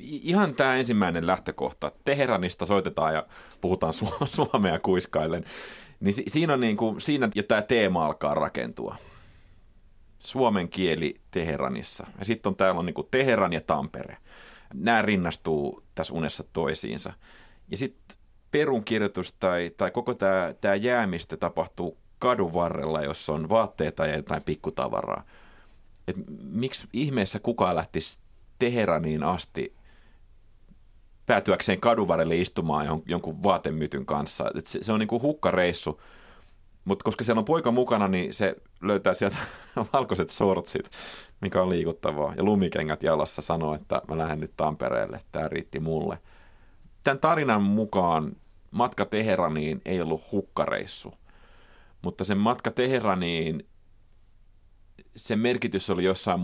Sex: male